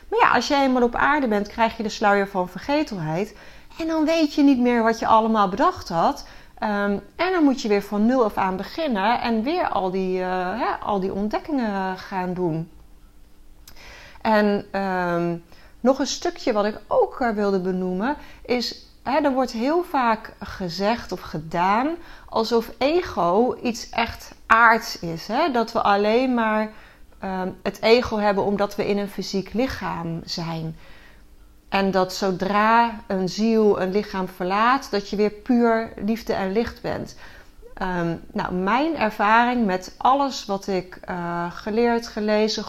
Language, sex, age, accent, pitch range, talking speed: Dutch, female, 30-49, Dutch, 190-245 Hz, 150 wpm